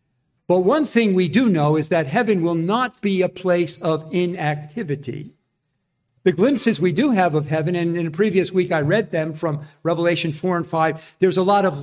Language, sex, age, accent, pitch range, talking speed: English, male, 50-69, American, 170-230 Hz, 205 wpm